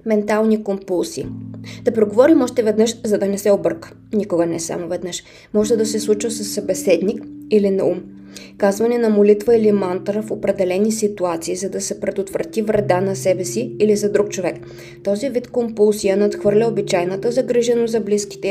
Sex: female